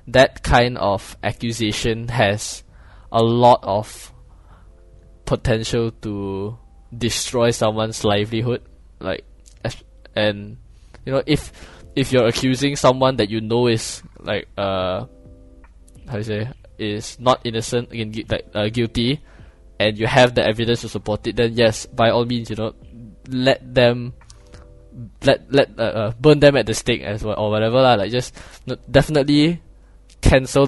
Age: 10-29